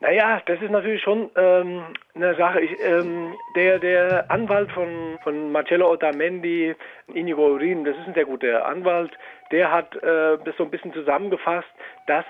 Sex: male